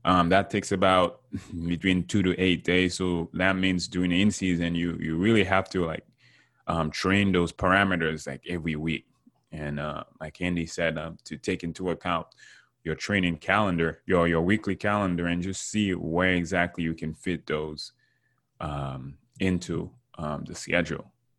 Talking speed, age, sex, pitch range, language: 165 wpm, 20-39, male, 80-95 Hz, English